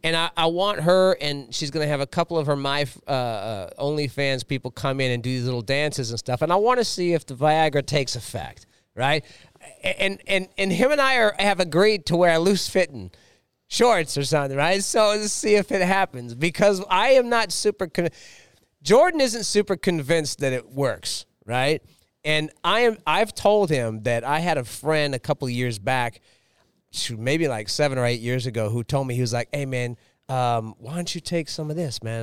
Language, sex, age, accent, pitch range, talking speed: English, male, 40-59, American, 125-170 Hz, 210 wpm